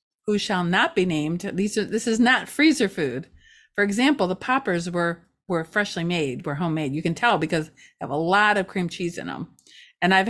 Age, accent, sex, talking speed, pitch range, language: 40-59, American, female, 215 wpm, 165-215 Hz, English